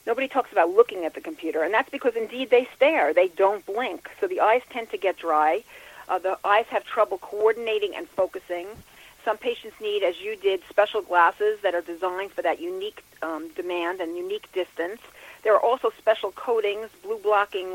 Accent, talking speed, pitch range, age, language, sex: American, 190 wpm, 185-290 Hz, 40-59, English, female